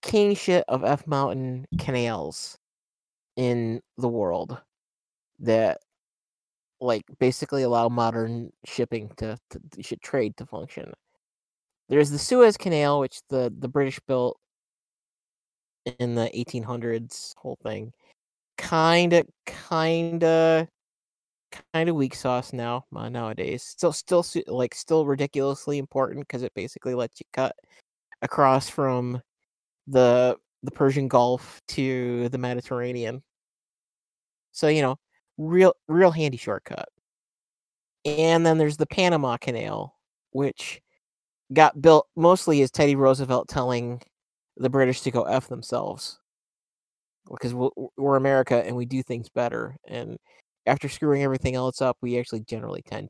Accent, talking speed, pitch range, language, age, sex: American, 125 wpm, 125-155 Hz, English, 30-49, male